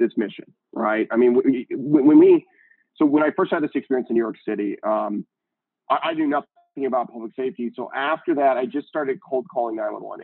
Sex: male